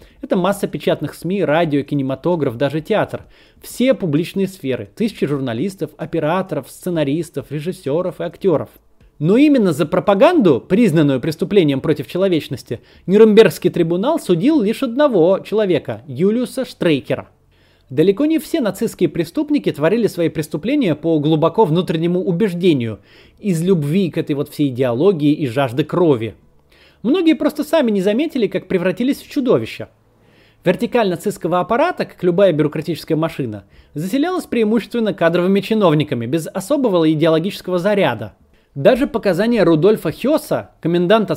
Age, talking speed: 20-39, 125 wpm